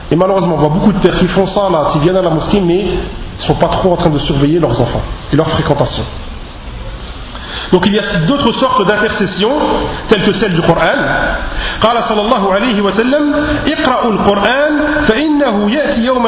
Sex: male